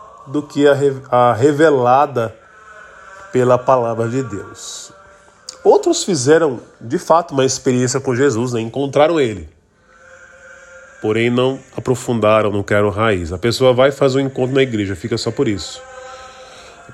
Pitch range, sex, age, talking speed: 115-175 Hz, male, 20-39, 135 wpm